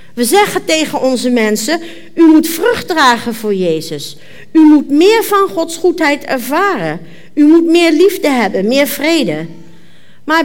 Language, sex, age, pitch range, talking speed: Dutch, female, 50-69, 200-275 Hz, 150 wpm